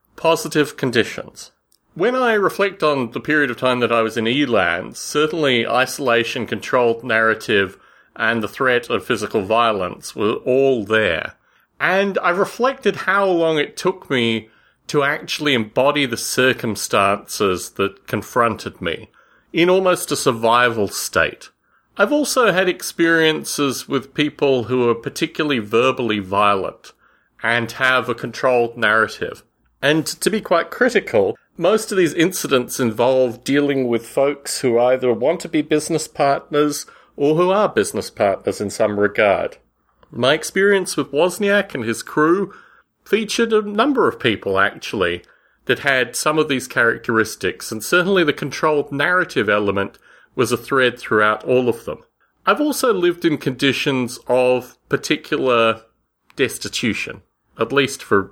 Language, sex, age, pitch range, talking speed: English, male, 30-49, 120-175 Hz, 140 wpm